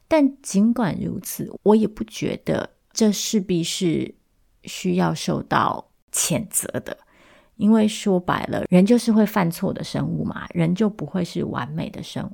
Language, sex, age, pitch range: Chinese, female, 30-49, 145-190 Hz